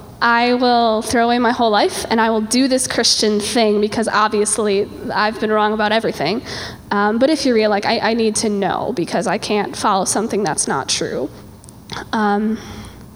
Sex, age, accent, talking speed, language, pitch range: female, 10-29, American, 185 wpm, English, 215-245 Hz